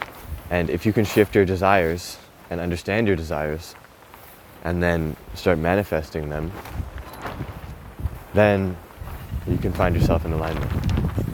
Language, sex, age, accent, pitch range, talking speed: English, male, 20-39, American, 80-100 Hz, 120 wpm